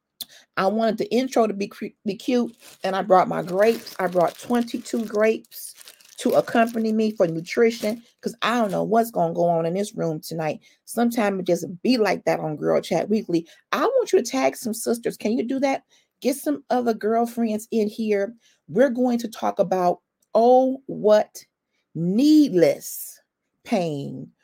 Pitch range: 185-240 Hz